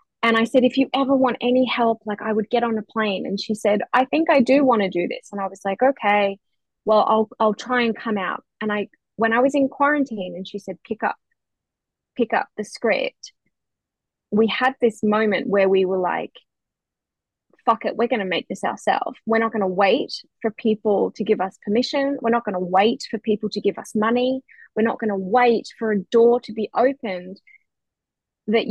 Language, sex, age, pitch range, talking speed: English, female, 20-39, 205-255 Hz, 220 wpm